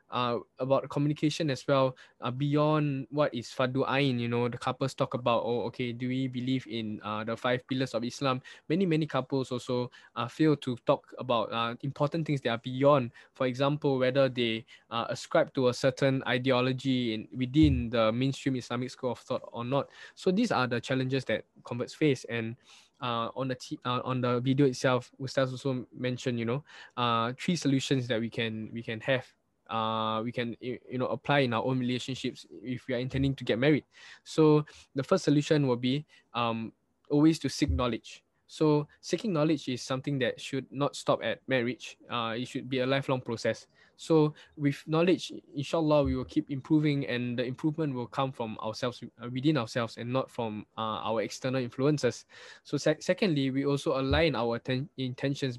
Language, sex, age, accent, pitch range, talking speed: English, male, 10-29, Malaysian, 125-145 Hz, 185 wpm